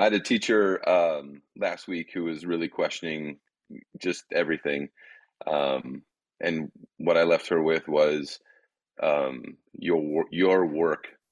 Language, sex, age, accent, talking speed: English, male, 30-49, American, 135 wpm